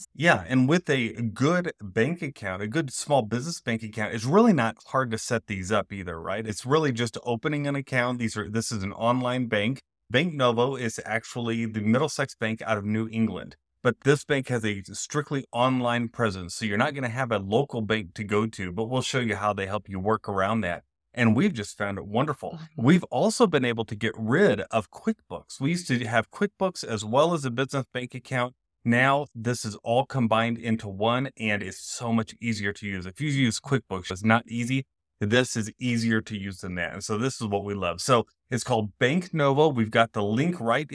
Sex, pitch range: male, 105-135 Hz